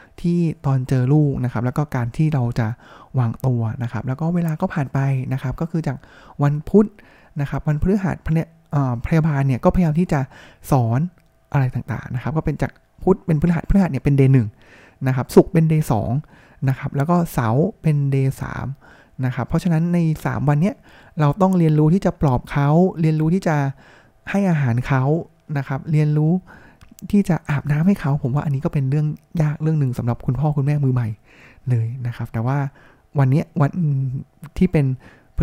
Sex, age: male, 20-39